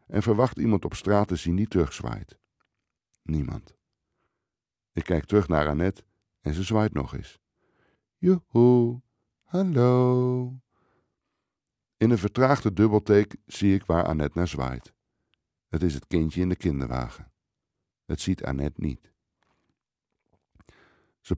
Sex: male